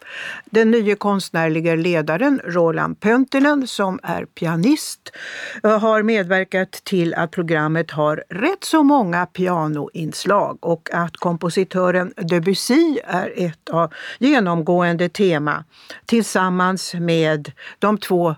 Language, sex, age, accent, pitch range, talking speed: Swedish, female, 60-79, native, 165-215 Hz, 105 wpm